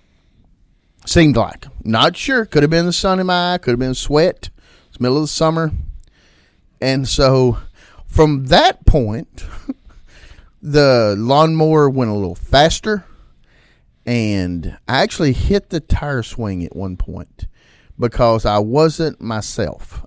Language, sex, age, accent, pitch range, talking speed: English, male, 40-59, American, 100-155 Hz, 140 wpm